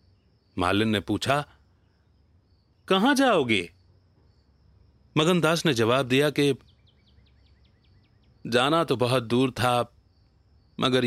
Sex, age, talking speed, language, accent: male, 30-49, 85 wpm, Hindi, native